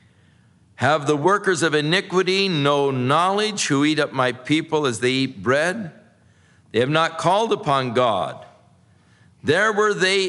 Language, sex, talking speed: English, male, 145 wpm